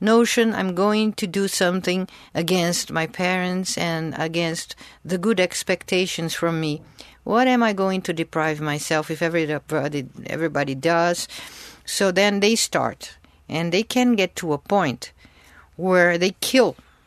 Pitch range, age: 155-205 Hz, 50-69